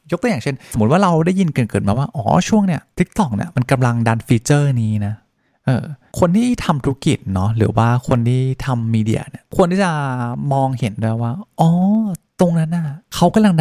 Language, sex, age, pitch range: Thai, male, 20-39, 115-160 Hz